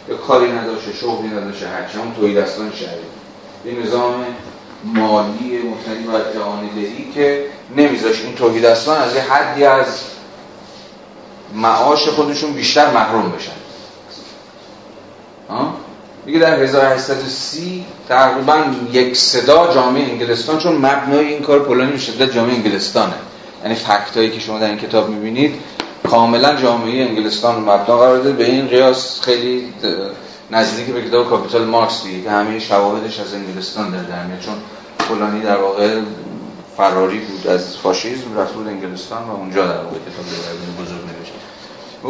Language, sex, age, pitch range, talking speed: Persian, male, 40-59, 110-135 Hz, 135 wpm